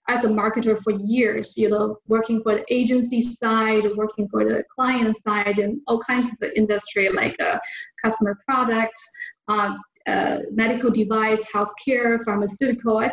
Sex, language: female, English